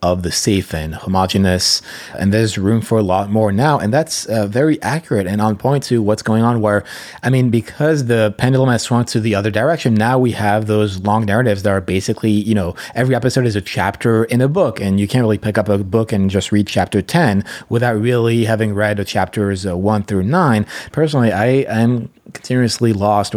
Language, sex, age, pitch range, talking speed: English, male, 30-49, 100-120 Hz, 215 wpm